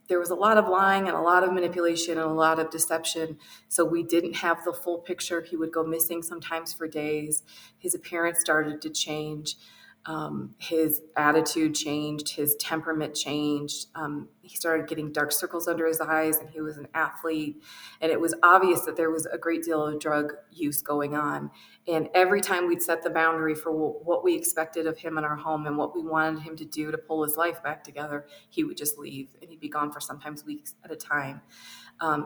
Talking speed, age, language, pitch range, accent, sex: 215 wpm, 30-49, English, 150-170 Hz, American, female